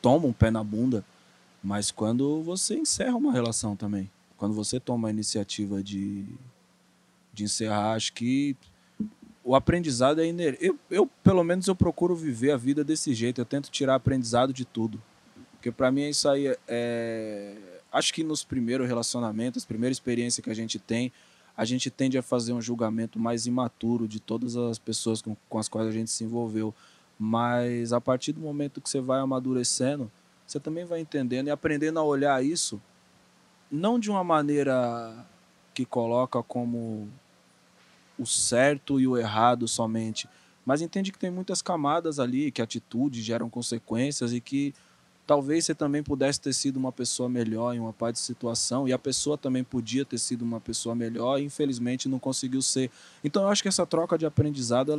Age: 20-39